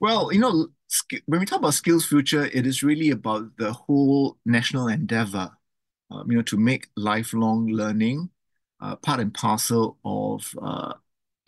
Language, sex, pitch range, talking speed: English, male, 115-145 Hz, 155 wpm